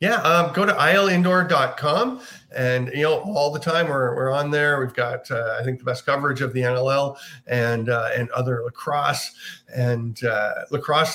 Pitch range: 125-155 Hz